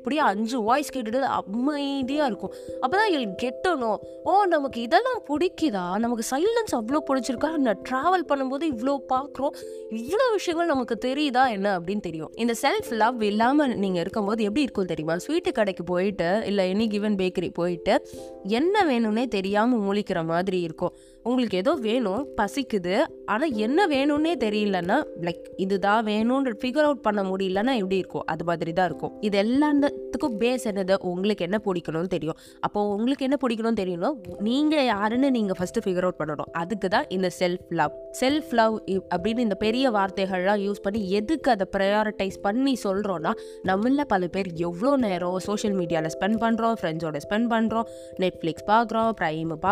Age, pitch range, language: 20-39, 185-265 Hz, Tamil